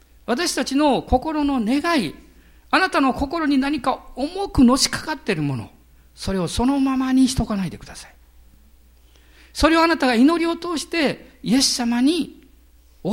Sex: male